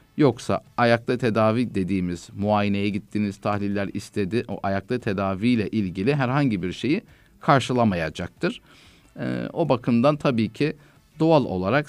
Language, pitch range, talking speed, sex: Turkish, 100-135 Hz, 120 wpm, male